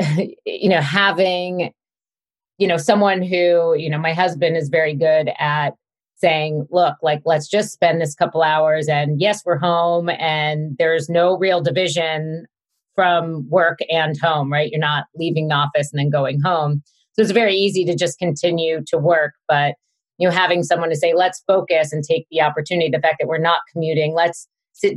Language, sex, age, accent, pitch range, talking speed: English, female, 30-49, American, 150-175 Hz, 185 wpm